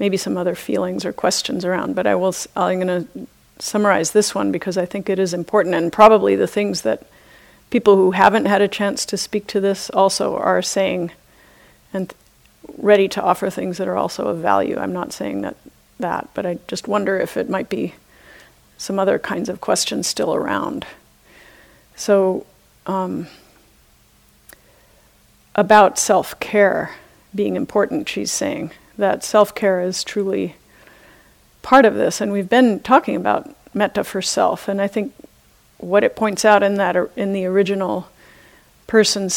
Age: 40-59